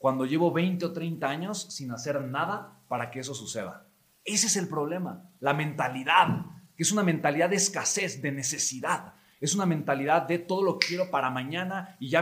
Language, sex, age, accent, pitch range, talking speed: English, male, 30-49, Mexican, 130-170 Hz, 190 wpm